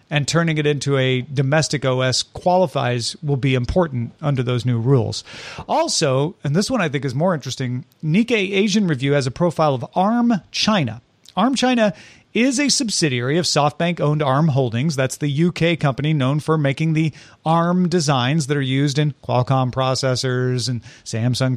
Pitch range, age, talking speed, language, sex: 130-180 Hz, 40-59, 165 wpm, English, male